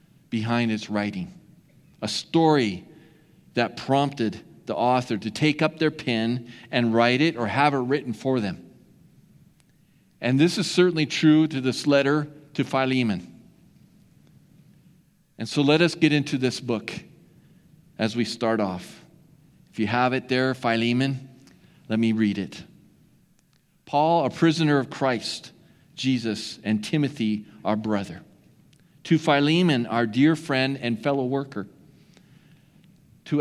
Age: 40-59